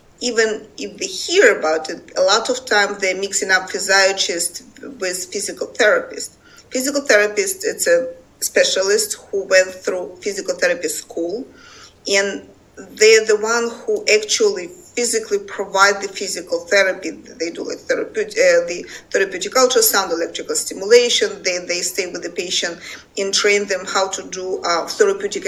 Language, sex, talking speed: English, female, 150 wpm